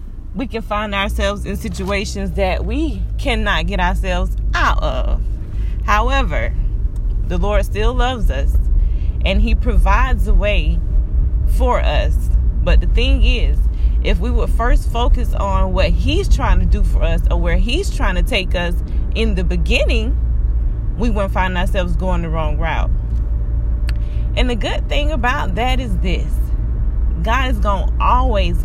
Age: 20-39